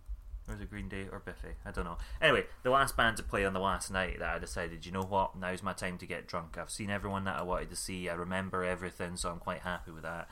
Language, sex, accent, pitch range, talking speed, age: English, male, British, 85-95 Hz, 285 wpm, 20-39